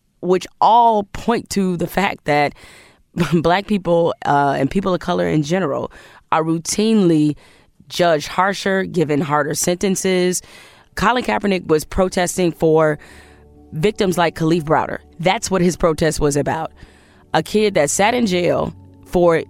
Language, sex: English, female